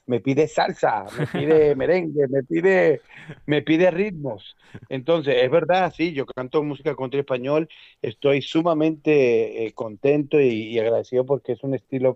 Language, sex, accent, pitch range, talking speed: Spanish, male, Mexican, 125-150 Hz, 160 wpm